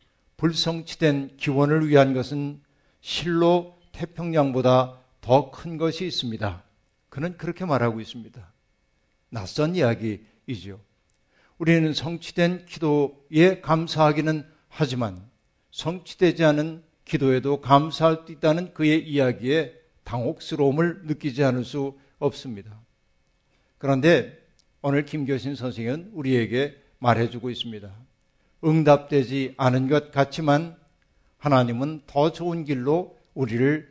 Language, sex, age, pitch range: Korean, male, 50-69, 130-165 Hz